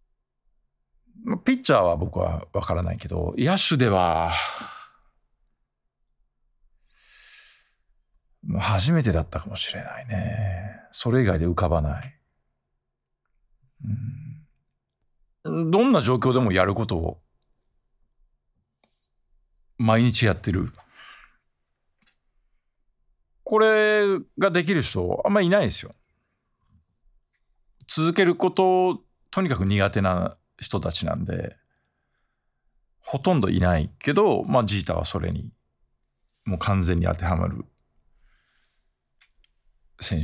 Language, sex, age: Japanese, male, 50-69